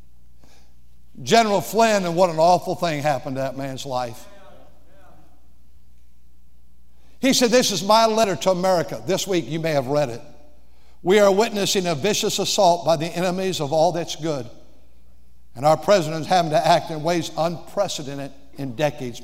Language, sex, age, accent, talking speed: English, male, 60-79, American, 160 wpm